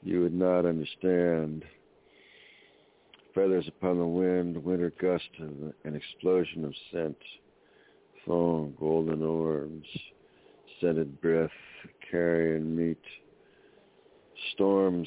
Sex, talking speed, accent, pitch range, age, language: male, 90 wpm, American, 75-85 Hz, 60-79, English